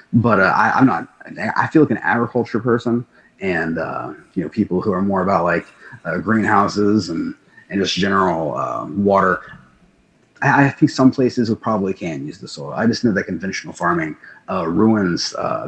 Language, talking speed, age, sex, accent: English, 190 wpm, 30-49, male, American